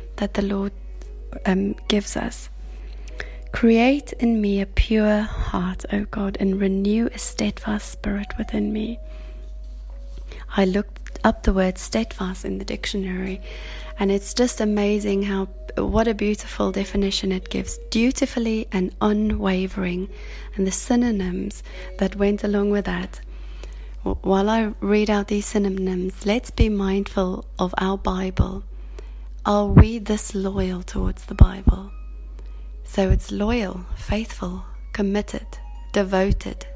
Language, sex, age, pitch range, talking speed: English, female, 30-49, 185-215 Hz, 125 wpm